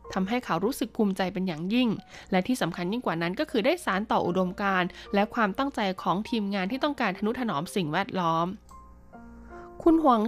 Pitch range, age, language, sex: 180-235 Hz, 20-39, Thai, female